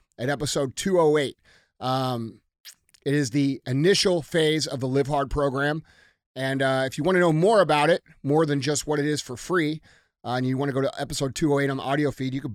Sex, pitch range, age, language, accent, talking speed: male, 125-165 Hz, 30-49, English, American, 225 wpm